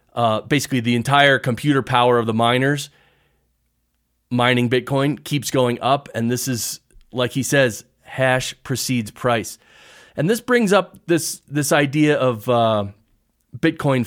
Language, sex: English, male